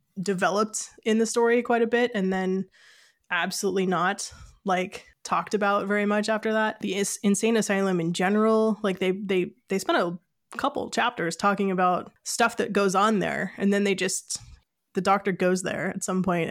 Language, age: English, 20-39